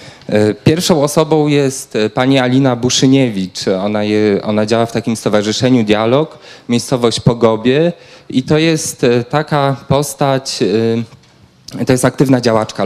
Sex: male